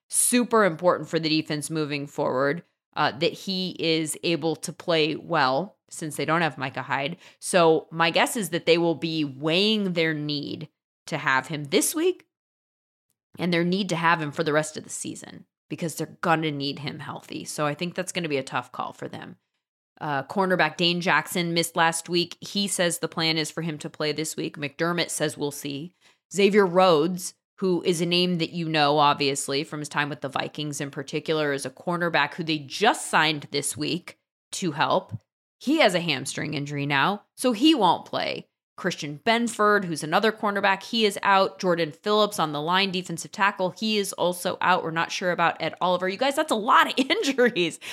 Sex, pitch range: female, 155-195 Hz